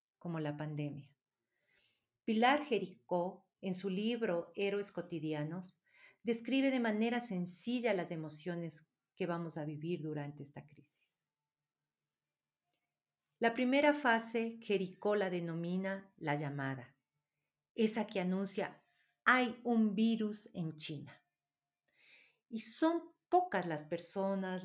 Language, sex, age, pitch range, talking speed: Spanish, female, 40-59, 155-225 Hz, 105 wpm